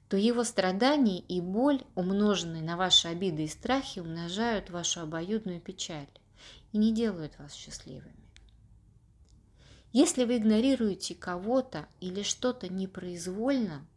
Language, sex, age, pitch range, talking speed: Russian, female, 30-49, 165-215 Hz, 115 wpm